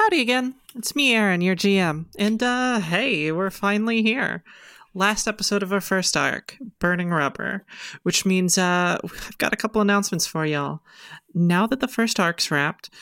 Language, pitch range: English, 180-230 Hz